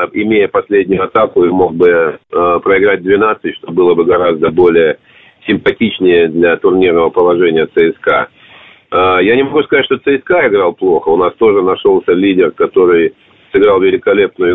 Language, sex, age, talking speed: Russian, male, 40-59, 150 wpm